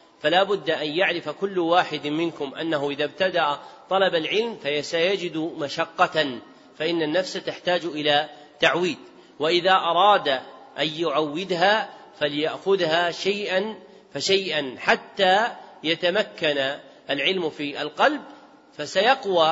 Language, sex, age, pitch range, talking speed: Arabic, male, 40-59, 150-190 Hz, 100 wpm